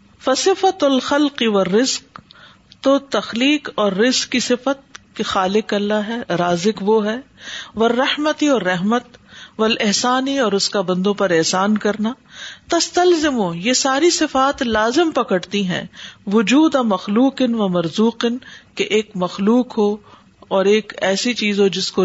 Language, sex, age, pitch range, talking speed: Urdu, female, 50-69, 185-235 Hz, 140 wpm